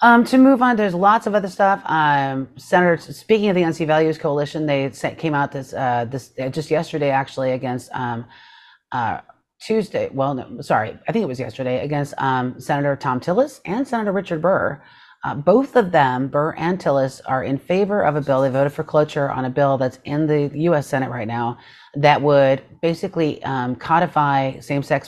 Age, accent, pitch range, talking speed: 30-49, American, 125-155 Hz, 195 wpm